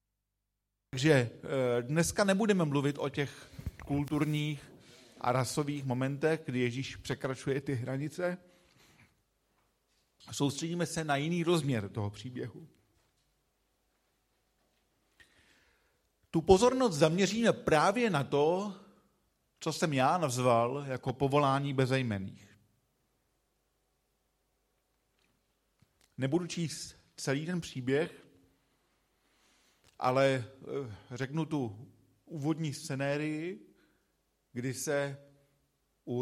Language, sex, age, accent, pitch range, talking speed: Czech, male, 50-69, native, 120-150 Hz, 80 wpm